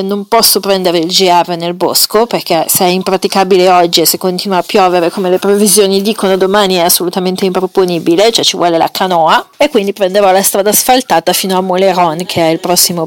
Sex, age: female, 40-59